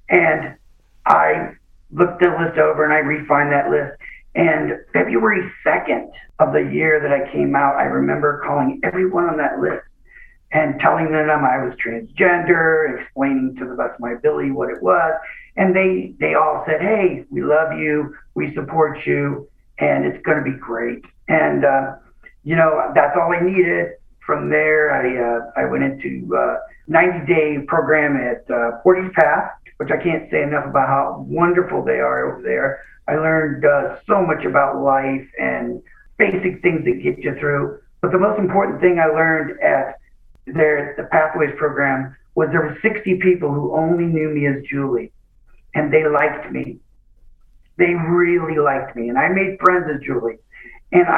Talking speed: 170 wpm